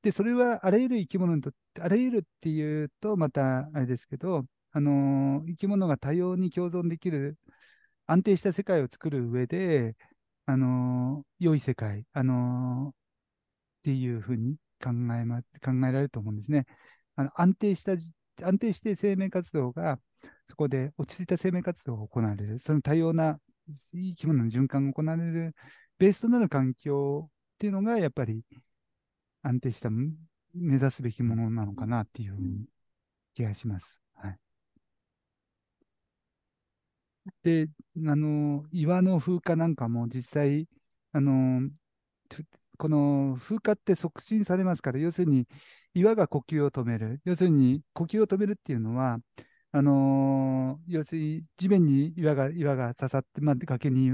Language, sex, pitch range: Japanese, male, 130-175 Hz